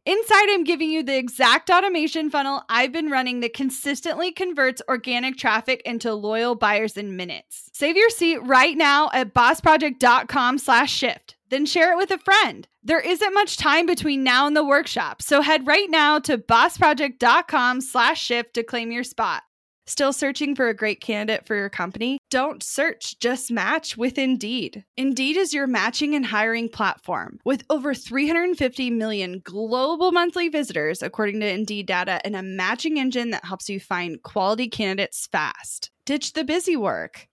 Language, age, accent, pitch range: English, 10-29, American, 220-295 Hz